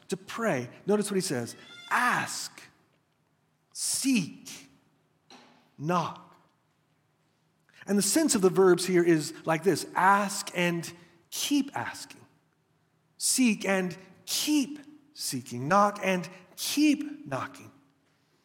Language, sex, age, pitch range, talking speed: English, male, 40-59, 165-215 Hz, 100 wpm